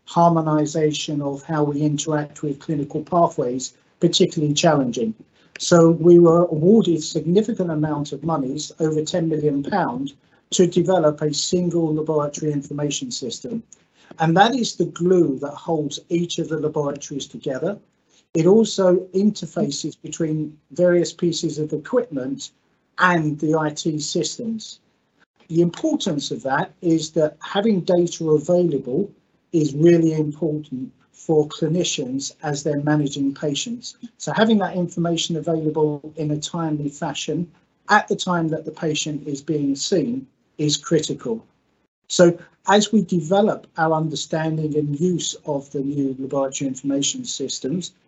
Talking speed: 130 wpm